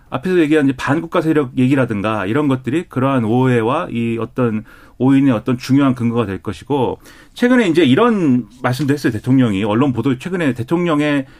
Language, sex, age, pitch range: Korean, male, 30-49, 120-170 Hz